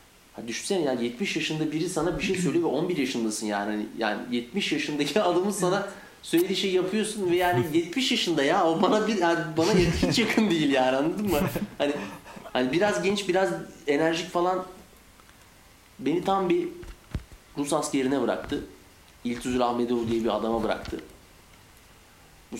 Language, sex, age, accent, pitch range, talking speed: Turkish, male, 40-59, native, 120-170 Hz, 150 wpm